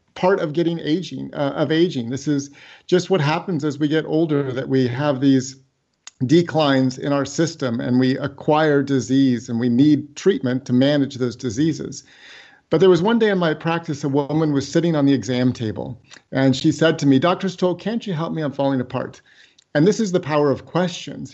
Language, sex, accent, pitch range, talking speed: English, male, American, 130-155 Hz, 205 wpm